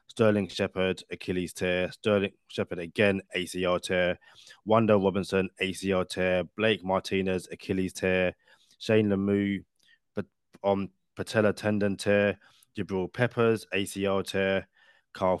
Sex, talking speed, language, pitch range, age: male, 110 wpm, English, 90-100 Hz, 20-39